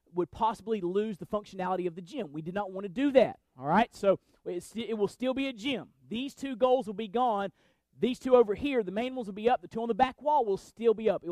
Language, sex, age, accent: English, male, 30-49, American